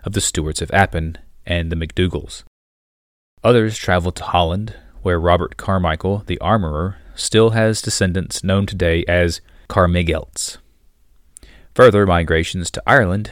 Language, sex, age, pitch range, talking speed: English, male, 30-49, 80-100 Hz, 125 wpm